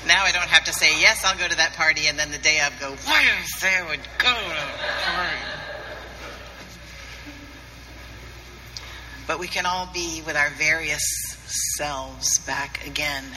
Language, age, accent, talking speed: English, 50-69, American, 165 wpm